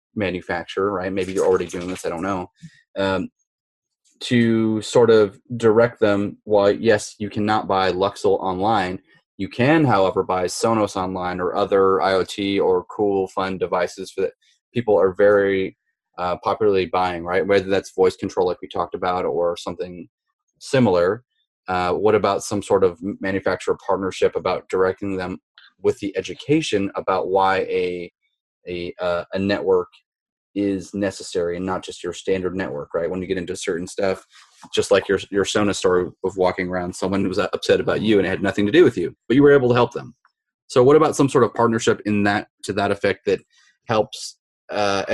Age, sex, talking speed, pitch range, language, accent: 30-49, male, 180 wpm, 95-125 Hz, English, American